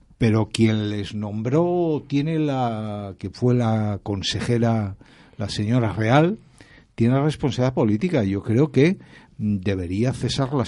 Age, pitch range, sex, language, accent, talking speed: 60-79, 115-150 Hz, male, Spanish, Spanish, 120 wpm